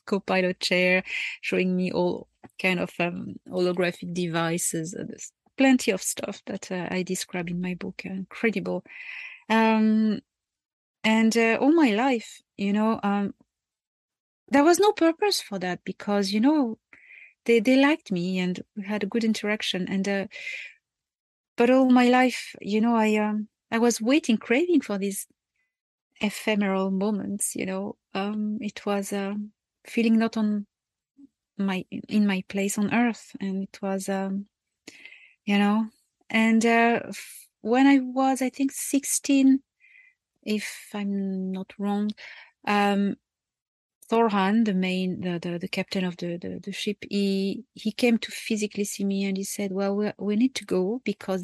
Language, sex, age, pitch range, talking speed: English, female, 30-49, 190-230 Hz, 155 wpm